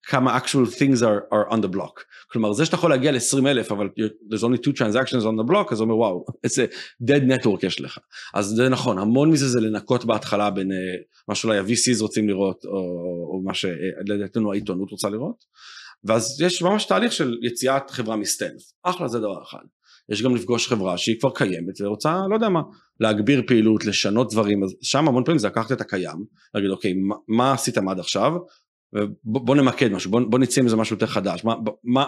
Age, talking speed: 30-49, 185 wpm